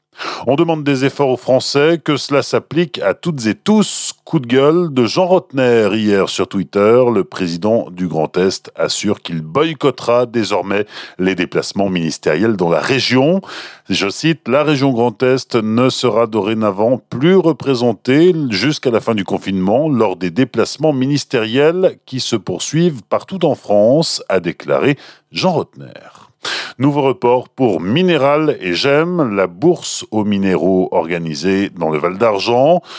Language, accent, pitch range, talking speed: French, French, 95-145 Hz, 150 wpm